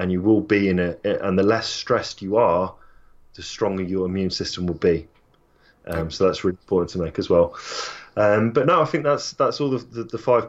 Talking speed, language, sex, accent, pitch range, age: 230 wpm, English, male, British, 95-115 Hz, 20-39